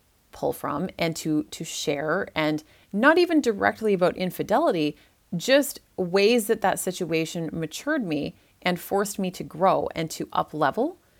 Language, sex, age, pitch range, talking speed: English, female, 30-49, 165-235 Hz, 150 wpm